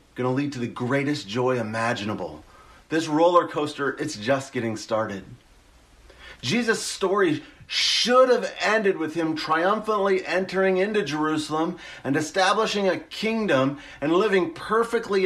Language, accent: English, American